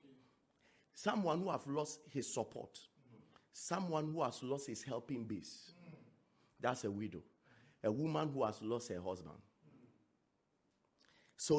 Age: 40-59